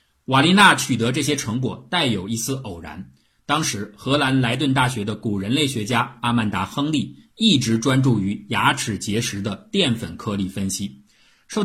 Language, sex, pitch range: Chinese, male, 105-125 Hz